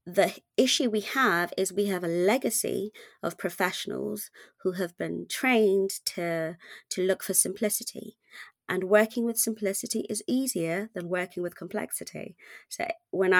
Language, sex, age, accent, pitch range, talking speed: English, female, 30-49, British, 170-210 Hz, 145 wpm